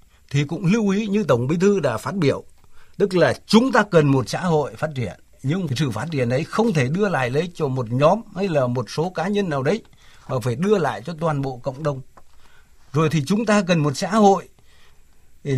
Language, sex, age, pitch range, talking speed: Vietnamese, male, 60-79, 140-200 Hz, 230 wpm